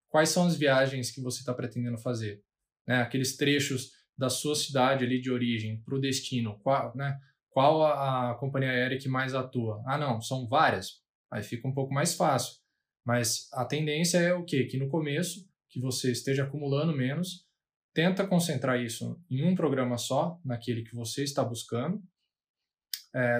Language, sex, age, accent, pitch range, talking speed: Portuguese, male, 20-39, Brazilian, 125-160 Hz, 175 wpm